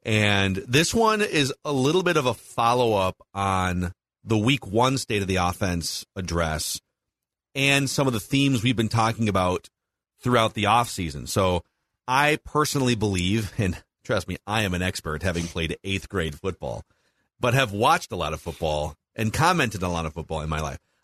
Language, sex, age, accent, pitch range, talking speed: English, male, 40-59, American, 95-145 Hz, 185 wpm